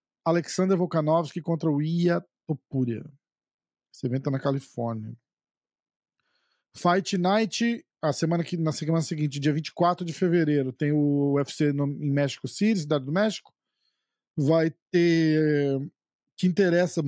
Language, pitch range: Portuguese, 135-175 Hz